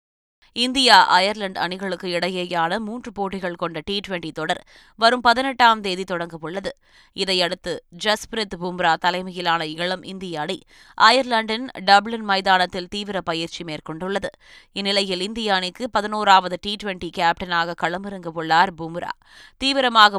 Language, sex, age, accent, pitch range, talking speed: Tamil, female, 20-39, native, 175-210 Hz, 105 wpm